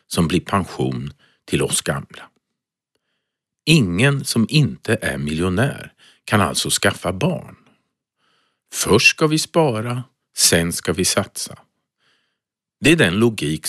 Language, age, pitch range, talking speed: Swedish, 50-69, 95-150 Hz, 120 wpm